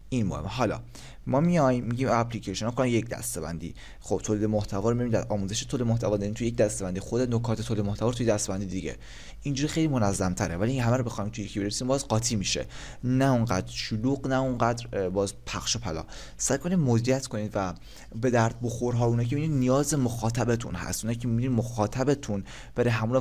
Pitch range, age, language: 105-130 Hz, 20-39, Persian